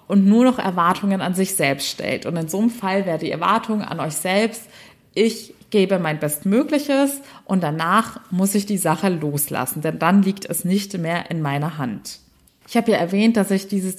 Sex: female